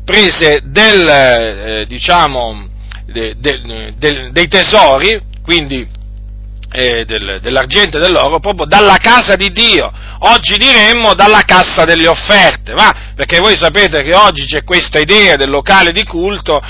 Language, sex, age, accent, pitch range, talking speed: Italian, male, 40-59, native, 145-210 Hz, 140 wpm